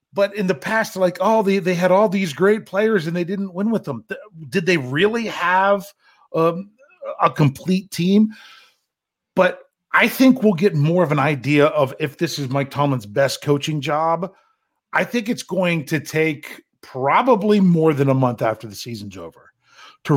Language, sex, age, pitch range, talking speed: English, male, 40-59, 140-185 Hz, 180 wpm